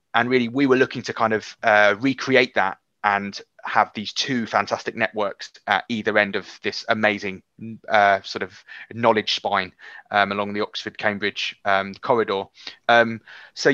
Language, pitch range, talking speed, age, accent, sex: English, 105-125 Hz, 155 wpm, 20-39, British, male